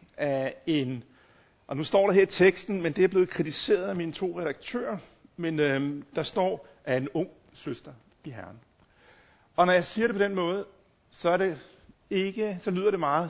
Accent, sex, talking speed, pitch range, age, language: native, male, 195 wpm, 125-185 Hz, 60-79, Danish